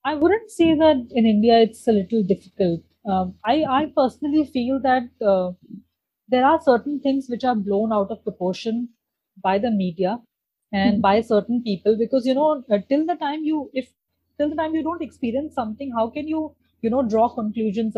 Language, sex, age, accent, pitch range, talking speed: Hindi, female, 30-49, native, 200-260 Hz, 185 wpm